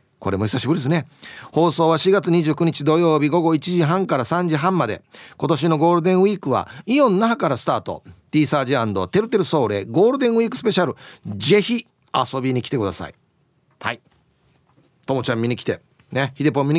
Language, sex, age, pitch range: Japanese, male, 40-59, 135-190 Hz